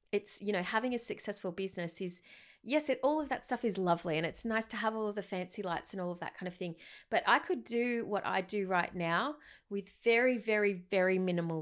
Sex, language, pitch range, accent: female, English, 175-220 Hz, Australian